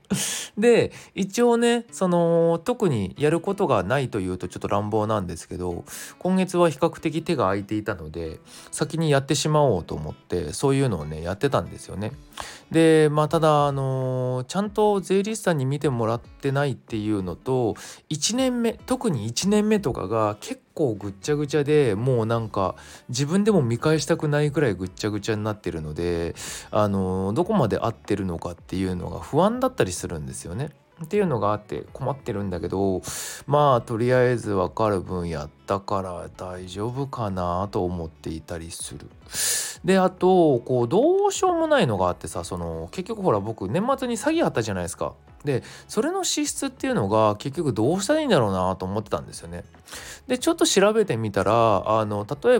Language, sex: Japanese, male